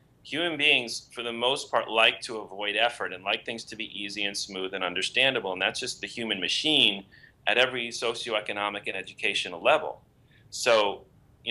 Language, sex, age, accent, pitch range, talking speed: English, male, 30-49, American, 100-125 Hz, 175 wpm